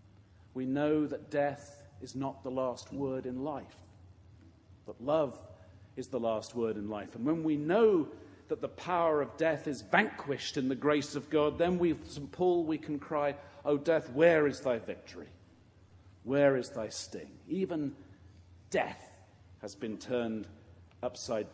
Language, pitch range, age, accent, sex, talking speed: English, 100-150 Hz, 40-59, British, male, 160 wpm